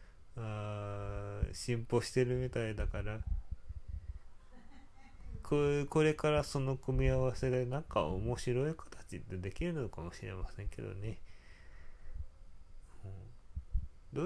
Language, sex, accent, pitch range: Japanese, male, native, 90-125 Hz